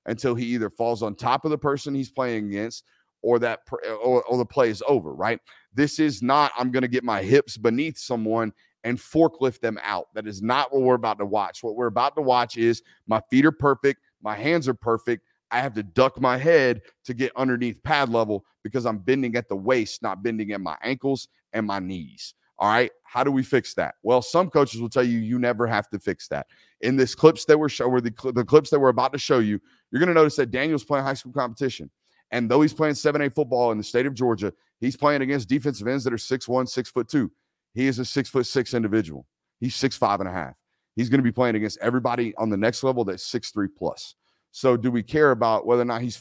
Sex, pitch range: male, 110-135 Hz